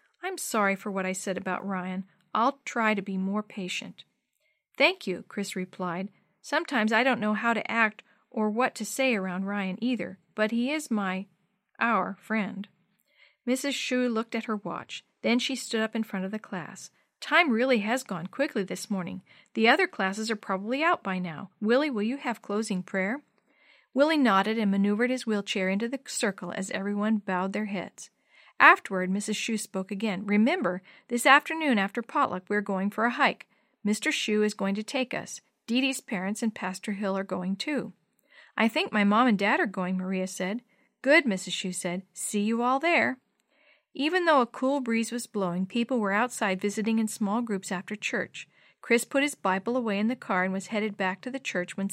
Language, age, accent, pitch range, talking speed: English, 50-69, American, 195-250 Hz, 195 wpm